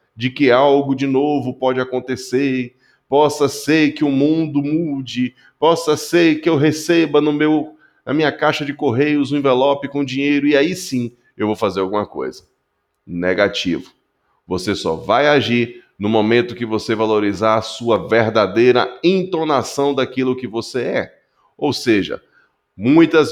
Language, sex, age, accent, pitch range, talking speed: Portuguese, male, 20-39, Brazilian, 115-150 Hz, 145 wpm